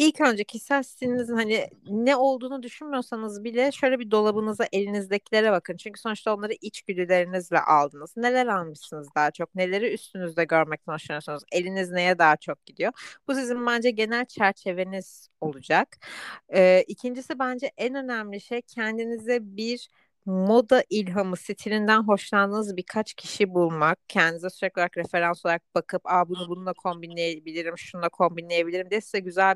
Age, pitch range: 30-49, 180-230 Hz